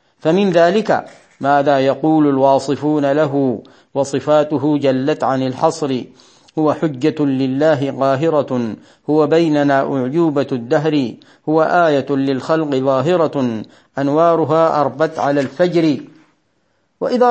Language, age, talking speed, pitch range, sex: Arabic, 40-59, 95 wpm, 140-175 Hz, male